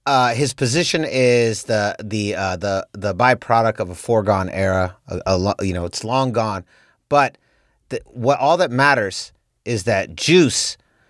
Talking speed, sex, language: 160 wpm, male, English